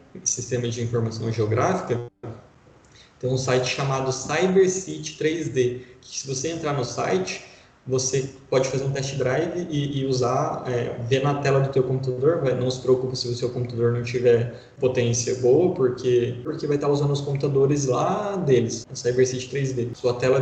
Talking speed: 165 wpm